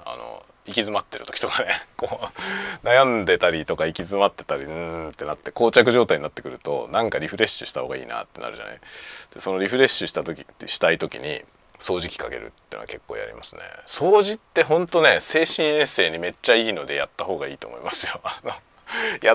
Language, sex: Japanese, male